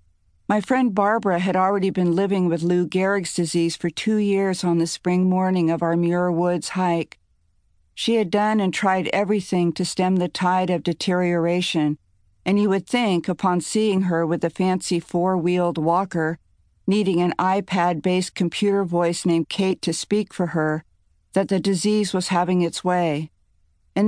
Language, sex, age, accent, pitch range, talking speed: English, female, 50-69, American, 165-190 Hz, 165 wpm